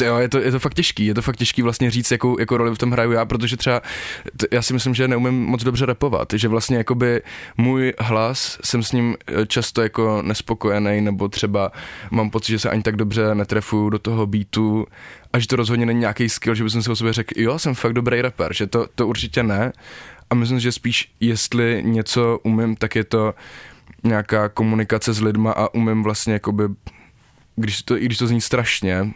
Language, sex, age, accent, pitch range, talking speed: Czech, male, 10-29, native, 105-120 Hz, 210 wpm